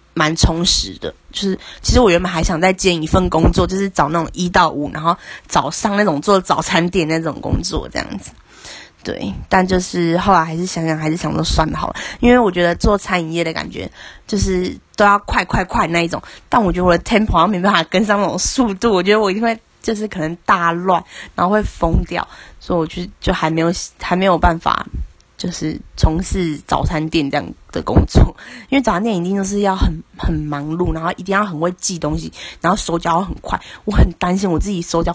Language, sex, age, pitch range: Chinese, female, 20-39, 160-195 Hz